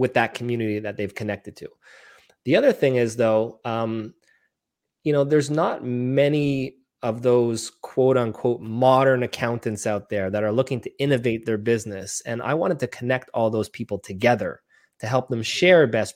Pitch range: 115-140 Hz